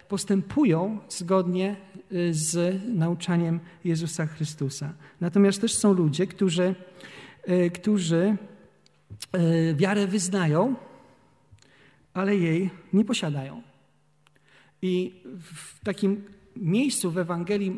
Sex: male